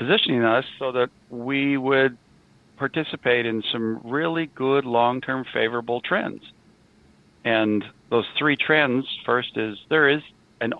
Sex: male